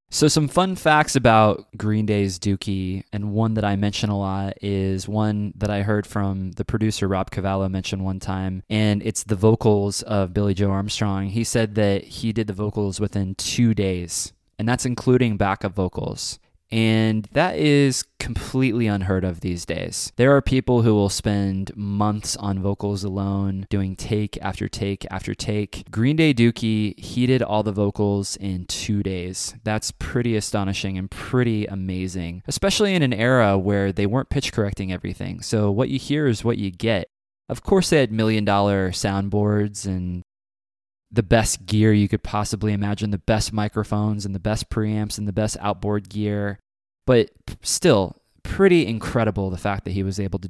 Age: 20-39